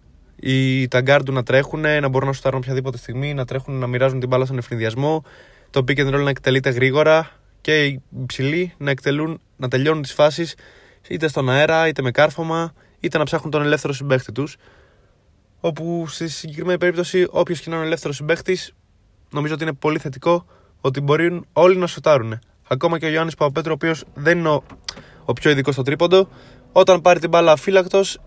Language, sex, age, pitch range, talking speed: Greek, male, 20-39, 130-160 Hz, 180 wpm